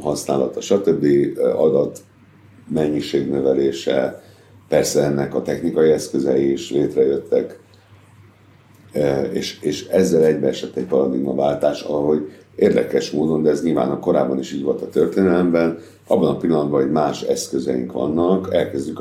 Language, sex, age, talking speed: Hungarian, male, 60-79, 125 wpm